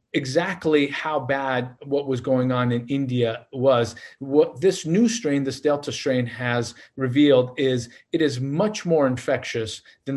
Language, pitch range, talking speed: English, 120-155 Hz, 155 wpm